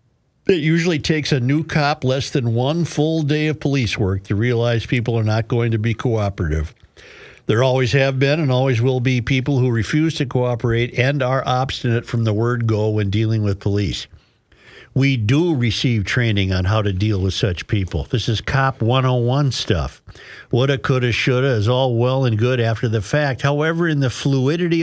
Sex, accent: male, American